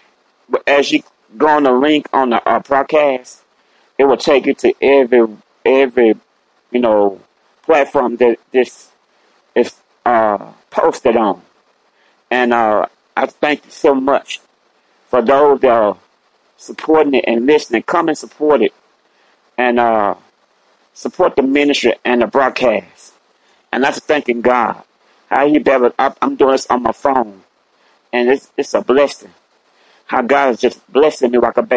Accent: American